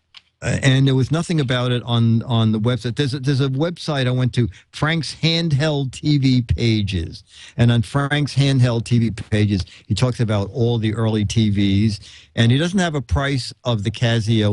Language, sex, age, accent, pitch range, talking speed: English, male, 50-69, American, 105-135 Hz, 180 wpm